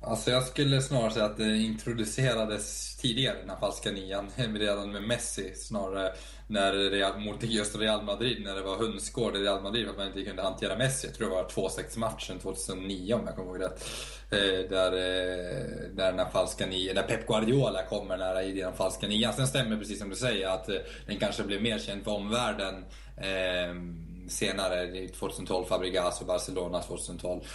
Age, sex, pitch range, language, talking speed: 20-39, male, 95-110 Hz, Swedish, 175 wpm